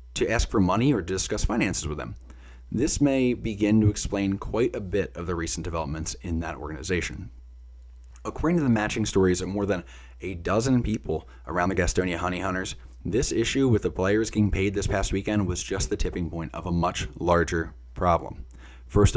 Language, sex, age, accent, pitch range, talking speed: English, male, 20-39, American, 80-110 Hz, 190 wpm